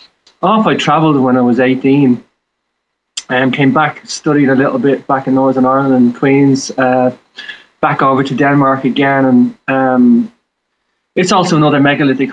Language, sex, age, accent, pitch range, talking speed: English, male, 20-39, Irish, 130-170 Hz, 155 wpm